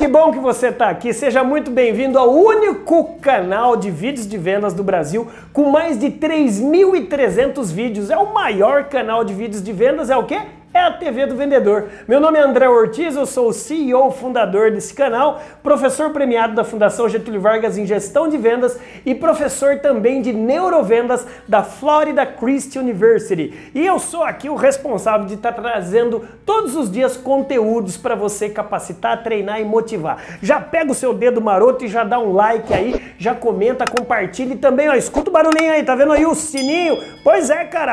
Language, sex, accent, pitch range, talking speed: Portuguese, male, Brazilian, 220-285 Hz, 190 wpm